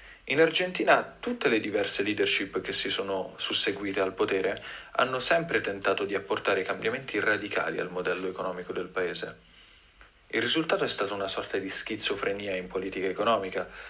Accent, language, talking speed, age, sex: native, Italian, 150 wpm, 30-49, male